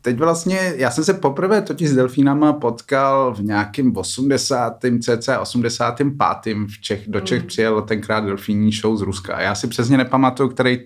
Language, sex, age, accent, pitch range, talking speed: Czech, male, 20-39, native, 100-125 Hz, 165 wpm